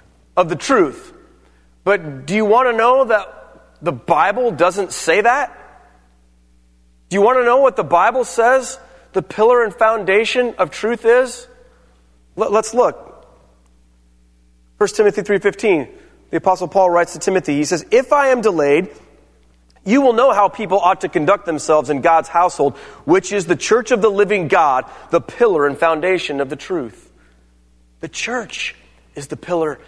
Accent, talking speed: American, 165 wpm